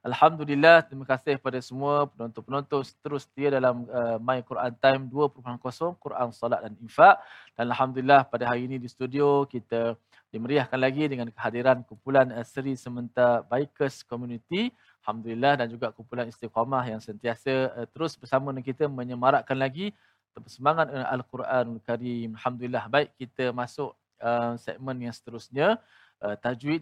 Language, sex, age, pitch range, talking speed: Malayalam, male, 20-39, 115-140 Hz, 130 wpm